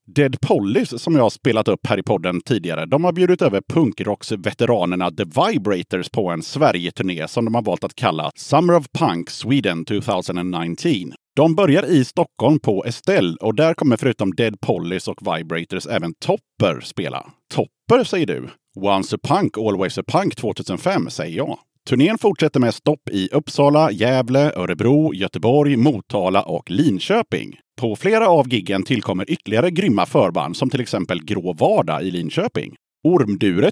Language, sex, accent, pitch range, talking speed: Swedish, male, Norwegian, 95-155 Hz, 155 wpm